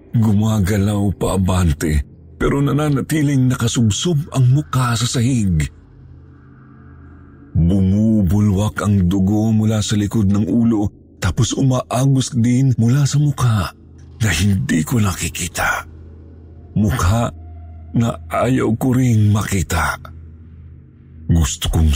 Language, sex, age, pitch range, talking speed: Filipino, male, 40-59, 80-115 Hz, 95 wpm